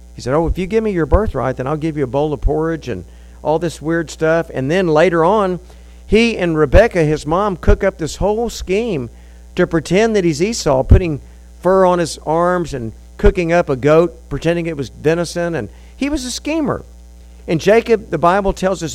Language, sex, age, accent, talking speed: English, male, 50-69, American, 210 wpm